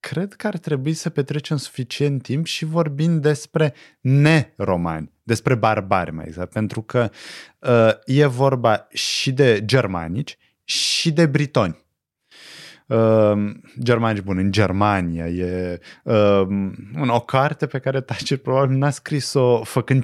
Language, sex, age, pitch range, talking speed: Romanian, male, 20-39, 110-155 Hz, 135 wpm